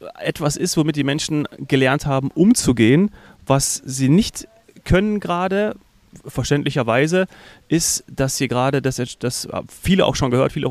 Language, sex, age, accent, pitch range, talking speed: German, male, 30-49, German, 130-160 Hz, 140 wpm